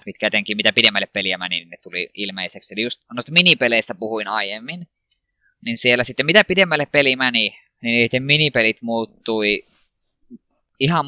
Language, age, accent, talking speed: Finnish, 20-39, native, 150 wpm